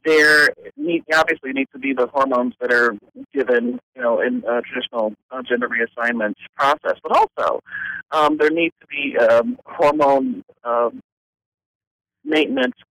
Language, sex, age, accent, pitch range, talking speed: English, male, 40-59, American, 125-180 Hz, 140 wpm